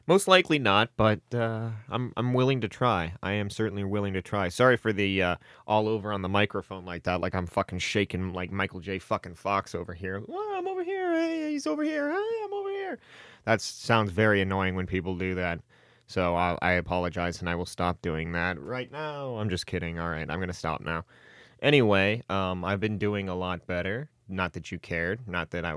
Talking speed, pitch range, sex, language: 220 wpm, 90-115 Hz, male, English